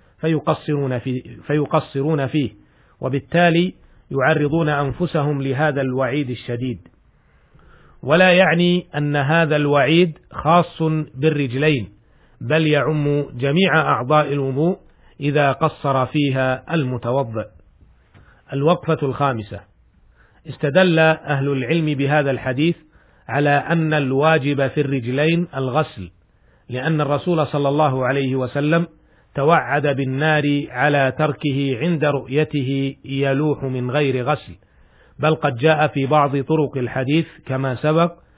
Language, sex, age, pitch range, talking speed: Arabic, male, 40-59, 130-155 Hz, 100 wpm